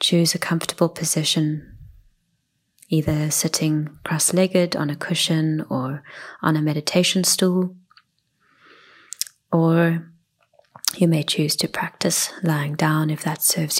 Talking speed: 115 wpm